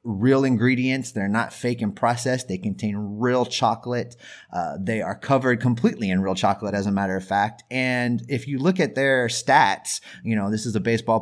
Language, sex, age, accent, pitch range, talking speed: English, male, 30-49, American, 110-145 Hz, 200 wpm